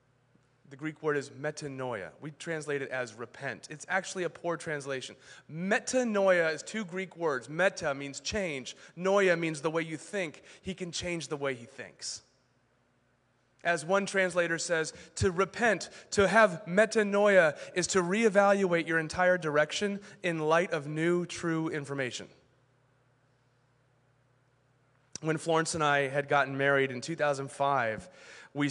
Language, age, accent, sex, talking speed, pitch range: English, 30-49, American, male, 140 wpm, 135-180 Hz